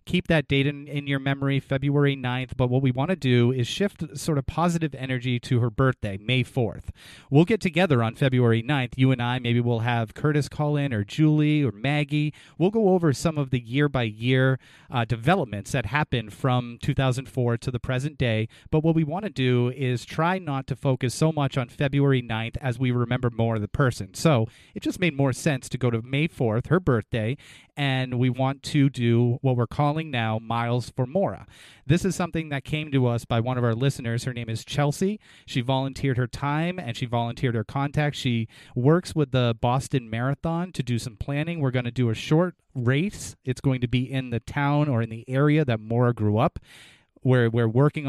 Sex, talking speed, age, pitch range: male, 210 wpm, 30-49, 120-150 Hz